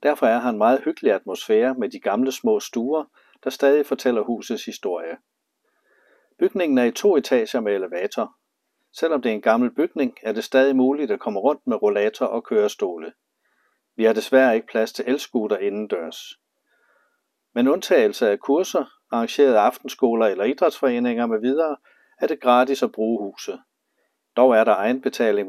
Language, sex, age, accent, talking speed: Danish, male, 60-79, native, 160 wpm